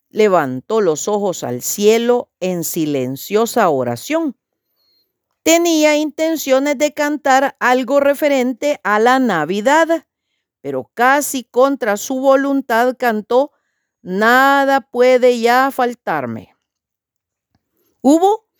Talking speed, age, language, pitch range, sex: 90 wpm, 50-69, Spanish, 200-275 Hz, female